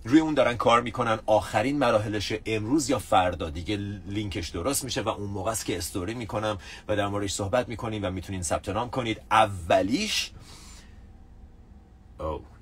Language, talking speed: Persian, 145 wpm